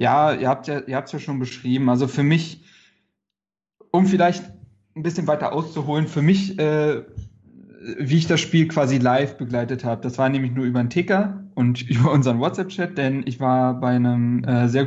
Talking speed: 185 wpm